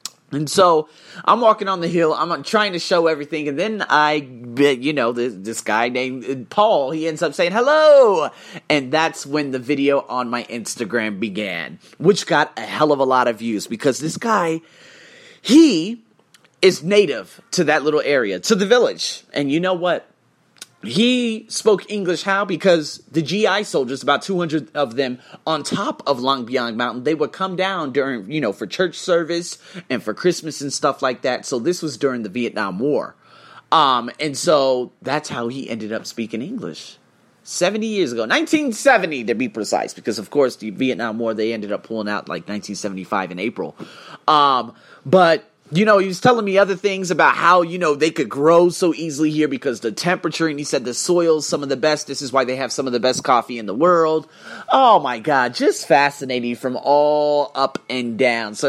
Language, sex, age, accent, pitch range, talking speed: English, male, 30-49, American, 125-180 Hz, 195 wpm